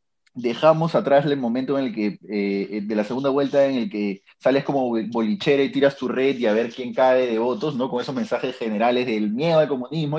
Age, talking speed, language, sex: 30-49, 225 wpm, Spanish, male